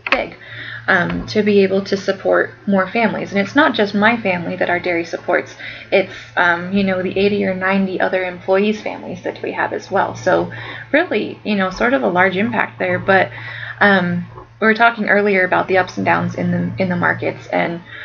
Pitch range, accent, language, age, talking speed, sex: 165-195 Hz, American, English, 20-39, 205 wpm, female